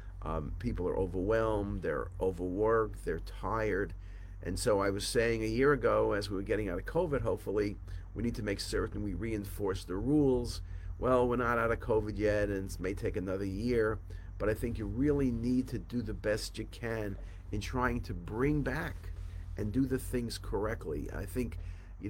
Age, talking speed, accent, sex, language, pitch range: 50-69, 195 wpm, American, male, English, 90-115 Hz